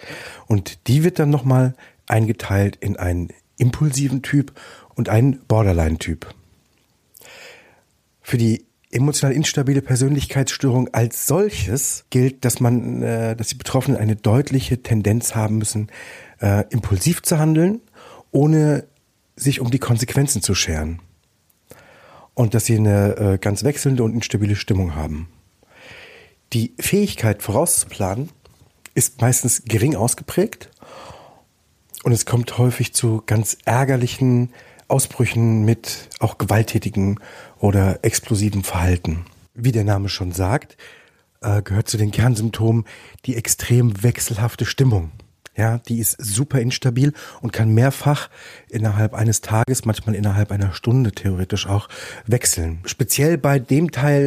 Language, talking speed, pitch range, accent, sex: German, 115 wpm, 105-130 Hz, German, male